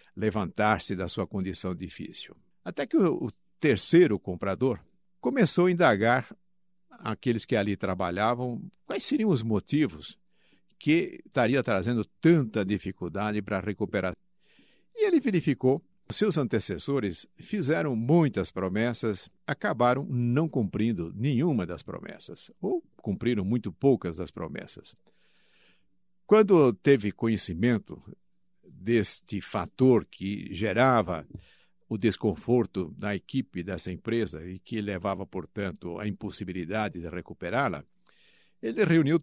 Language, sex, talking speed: Portuguese, male, 110 wpm